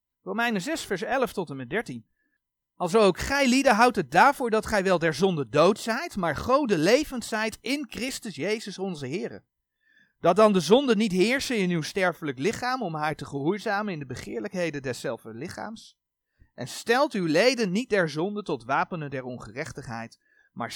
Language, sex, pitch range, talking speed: Dutch, male, 165-245 Hz, 180 wpm